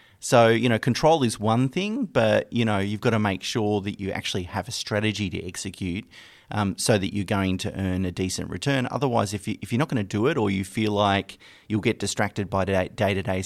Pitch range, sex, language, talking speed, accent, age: 100-125 Hz, male, English, 230 wpm, Australian, 30-49